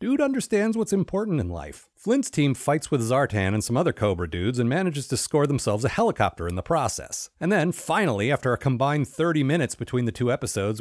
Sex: male